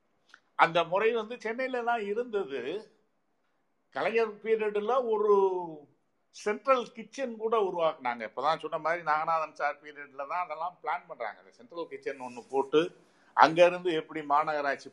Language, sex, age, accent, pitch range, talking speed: Tamil, male, 50-69, native, 130-205 Hz, 115 wpm